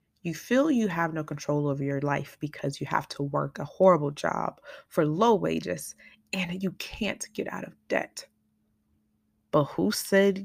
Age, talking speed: 30-49, 170 wpm